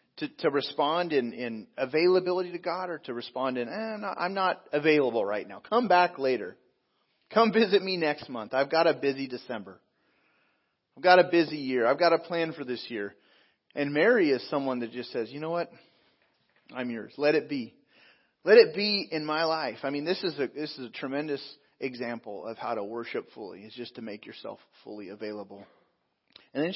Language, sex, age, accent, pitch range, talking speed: English, male, 30-49, American, 135-180 Hz, 200 wpm